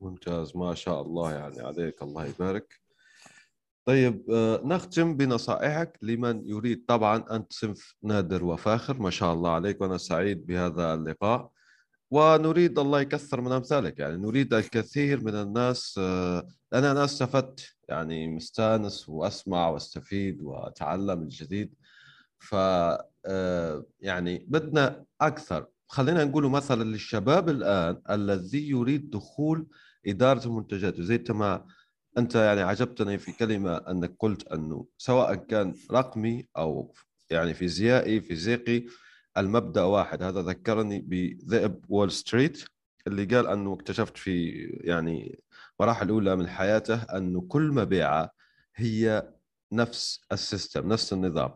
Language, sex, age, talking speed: Arabic, male, 30-49, 115 wpm